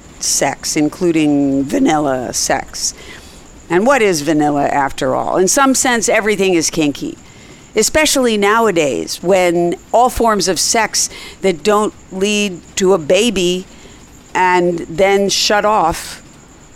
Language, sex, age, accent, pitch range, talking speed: English, female, 50-69, American, 155-205 Hz, 120 wpm